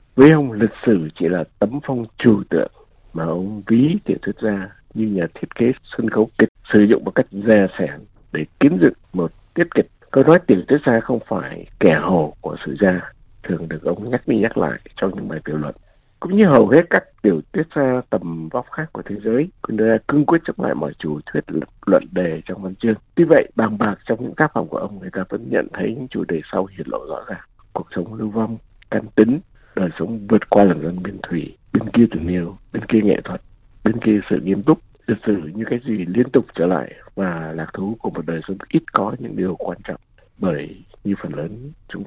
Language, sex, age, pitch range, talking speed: Vietnamese, male, 60-79, 95-120 Hz, 230 wpm